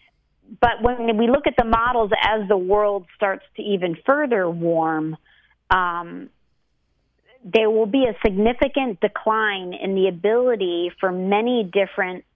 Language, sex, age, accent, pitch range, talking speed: English, female, 40-59, American, 175-210 Hz, 135 wpm